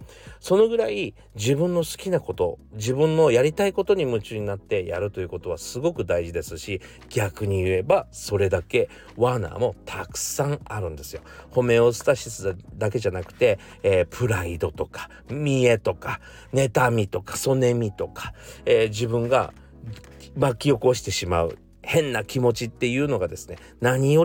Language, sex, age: Japanese, male, 40-59